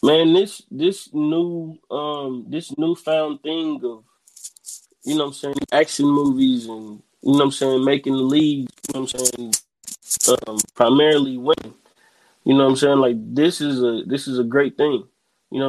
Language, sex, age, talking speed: English, male, 20-39, 185 wpm